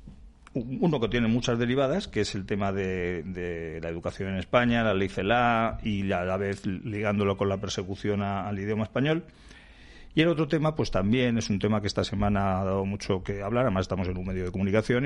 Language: Spanish